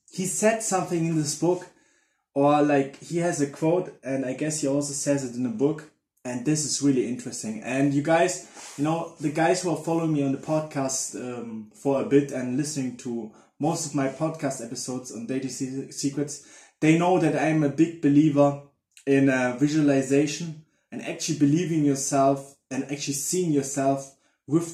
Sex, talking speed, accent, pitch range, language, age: male, 185 wpm, German, 135-165 Hz, English, 20-39